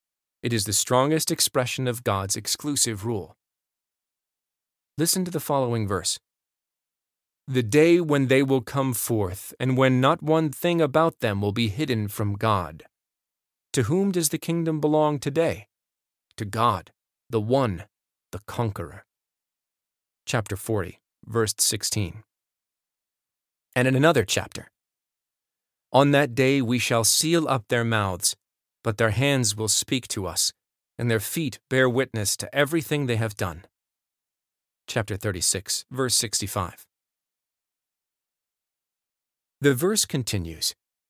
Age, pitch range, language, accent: 30-49, 105-140 Hz, English, American